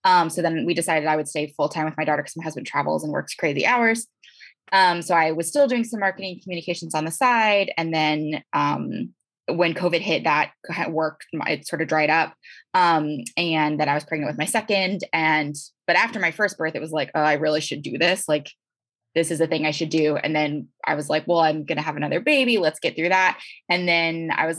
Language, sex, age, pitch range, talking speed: English, female, 20-39, 150-180 Hz, 235 wpm